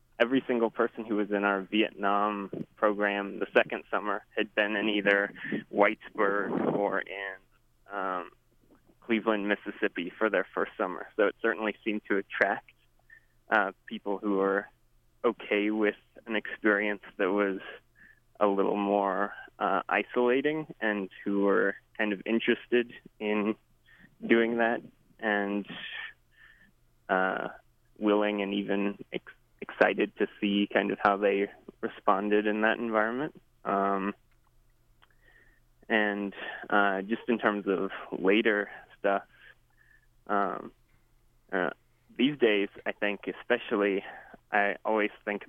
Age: 20-39